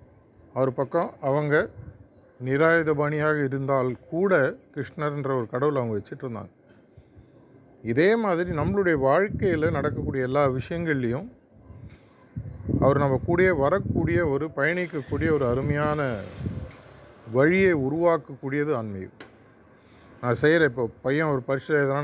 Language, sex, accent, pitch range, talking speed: Tamil, male, native, 115-150 Hz, 95 wpm